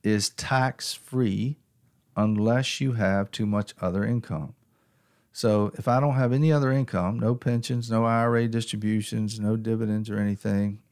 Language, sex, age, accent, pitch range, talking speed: English, male, 50-69, American, 105-125 Hz, 145 wpm